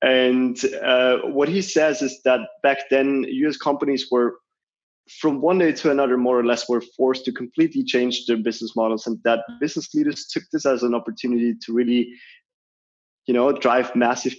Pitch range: 115-135 Hz